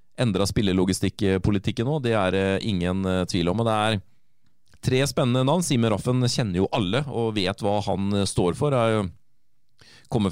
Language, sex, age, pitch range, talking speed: English, male, 30-49, 95-120 Hz, 165 wpm